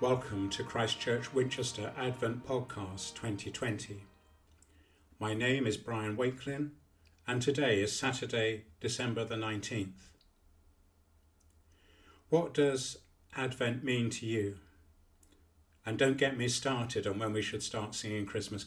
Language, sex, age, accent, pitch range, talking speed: English, male, 50-69, British, 80-130 Hz, 120 wpm